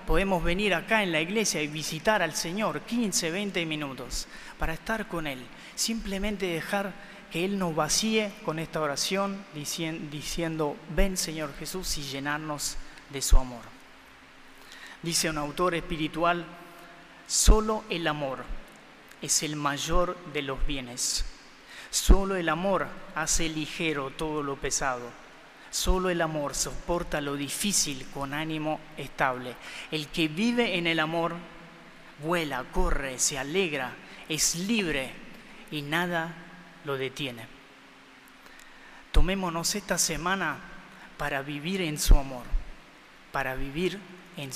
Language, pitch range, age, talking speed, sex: Spanish, 145-180 Hz, 30-49, 125 wpm, male